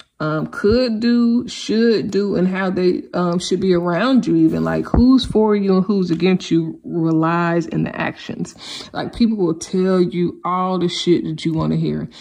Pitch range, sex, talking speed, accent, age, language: 165-205 Hz, female, 190 wpm, American, 20-39, English